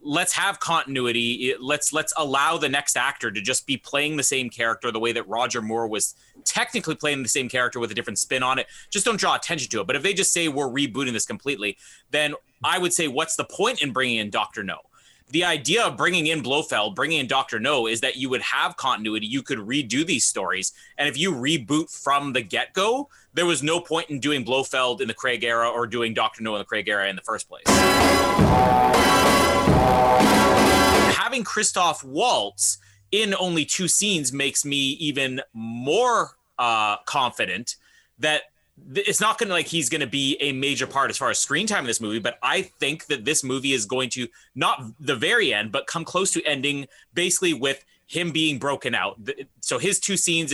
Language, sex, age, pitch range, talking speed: English, male, 30-49, 125-165 Hz, 205 wpm